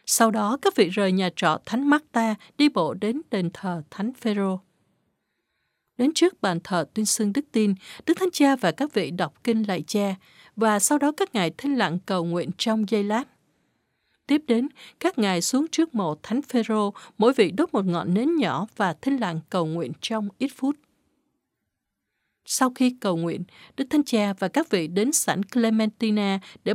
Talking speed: 190 wpm